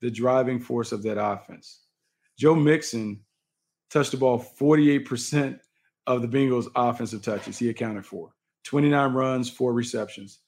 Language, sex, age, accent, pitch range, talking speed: English, male, 40-59, American, 120-150 Hz, 135 wpm